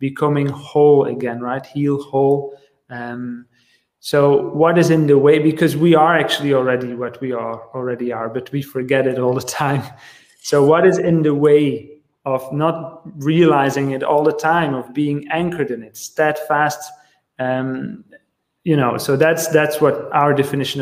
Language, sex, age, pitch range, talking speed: English, male, 30-49, 140-170 Hz, 165 wpm